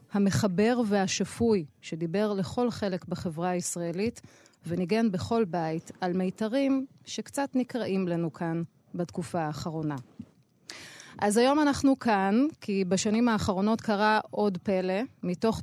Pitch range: 175-220 Hz